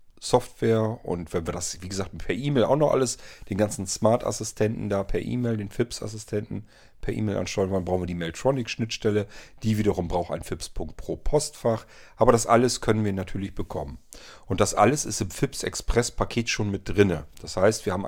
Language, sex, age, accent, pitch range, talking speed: German, male, 40-59, German, 95-115 Hz, 175 wpm